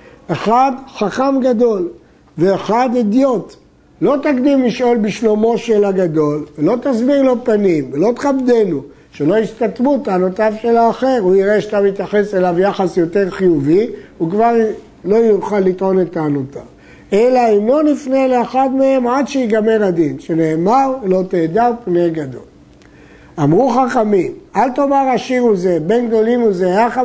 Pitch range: 185-245 Hz